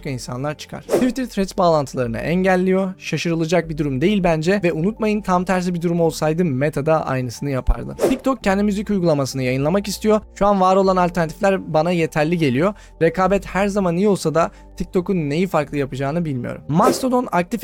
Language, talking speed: Turkish, 165 wpm